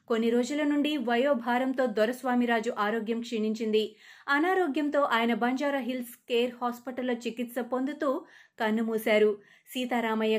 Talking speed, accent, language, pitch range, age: 100 wpm, native, Telugu, 225-270 Hz, 20-39